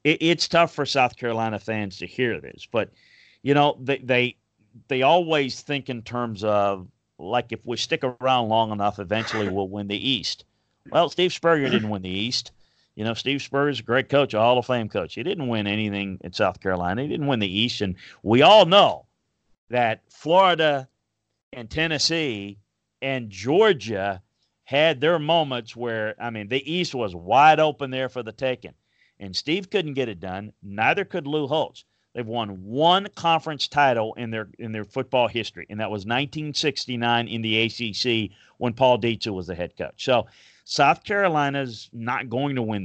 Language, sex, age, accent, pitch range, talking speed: English, male, 40-59, American, 105-145 Hz, 180 wpm